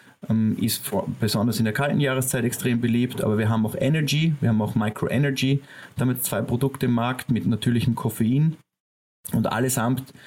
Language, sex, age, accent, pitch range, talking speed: German, male, 30-49, German, 115-130 Hz, 170 wpm